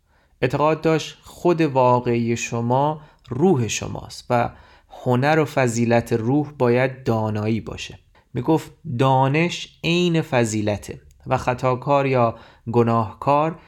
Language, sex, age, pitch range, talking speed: Persian, male, 30-49, 110-145 Hz, 105 wpm